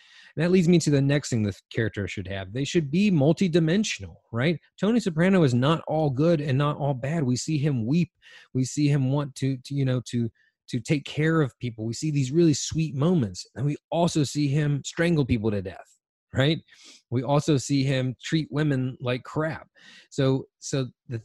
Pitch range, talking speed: 120-155 Hz, 200 wpm